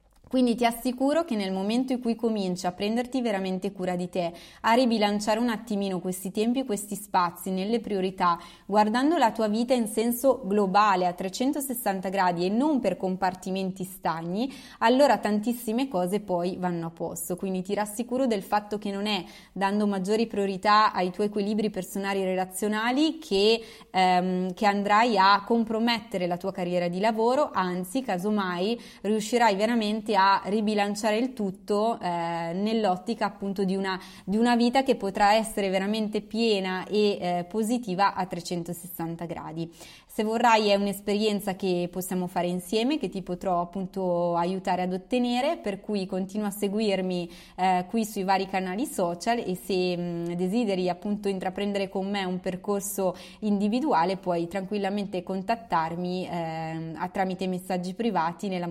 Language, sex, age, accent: Italian, female, 20-39, native